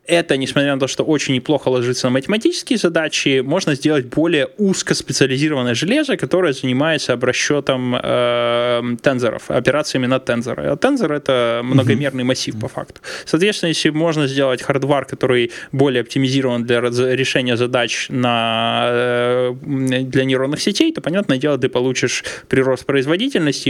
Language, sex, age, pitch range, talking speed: Russian, male, 20-39, 125-155 Hz, 135 wpm